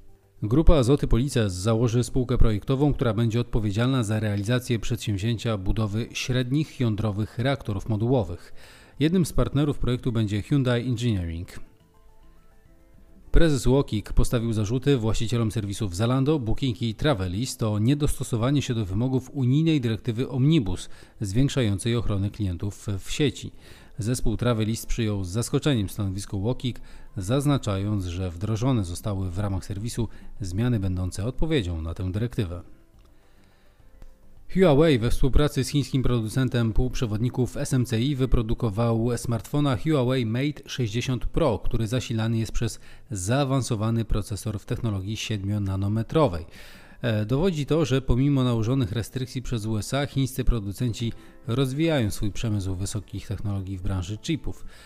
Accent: native